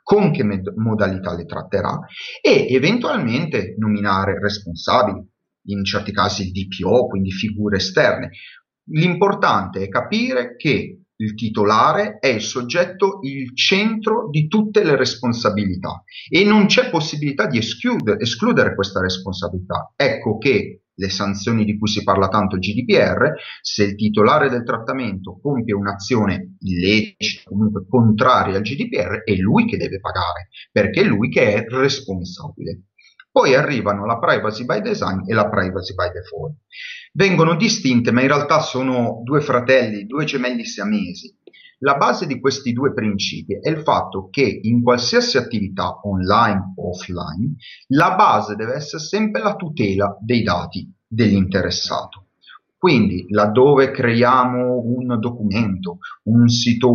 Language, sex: Italian, male